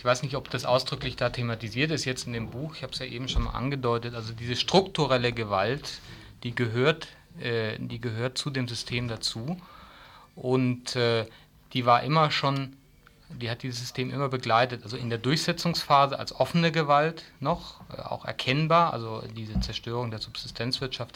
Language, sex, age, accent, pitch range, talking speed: German, male, 30-49, German, 115-140 Hz, 160 wpm